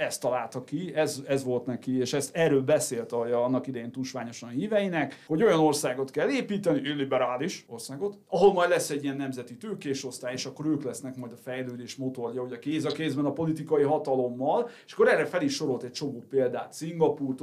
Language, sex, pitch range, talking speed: Hungarian, male, 125-155 Hz, 185 wpm